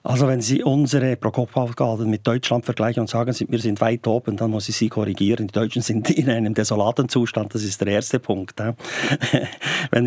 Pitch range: 110-130 Hz